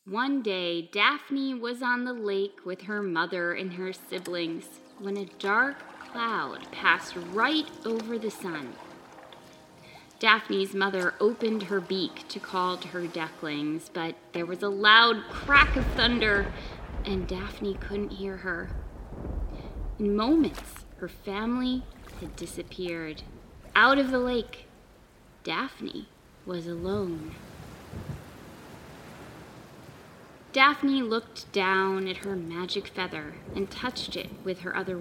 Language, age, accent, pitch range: English, 20-39, American, 175-240 Hz